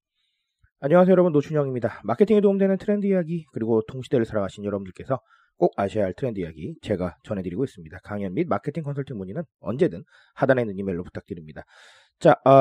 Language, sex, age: Korean, male, 30-49